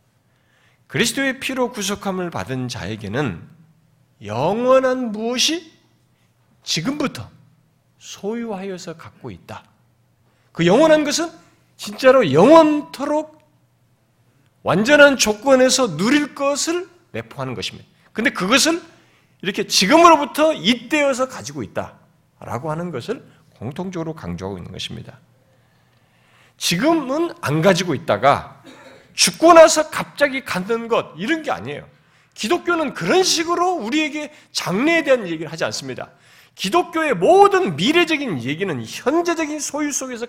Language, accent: Korean, native